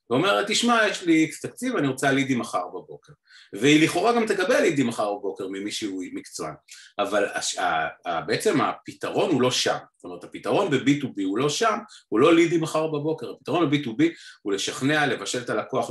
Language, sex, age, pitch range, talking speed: Hebrew, male, 30-49, 120-170 Hz, 190 wpm